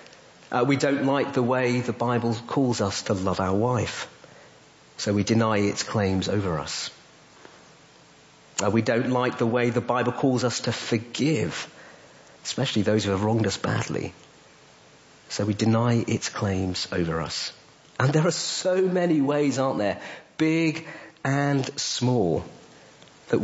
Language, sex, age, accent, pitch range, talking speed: English, male, 50-69, British, 110-145 Hz, 150 wpm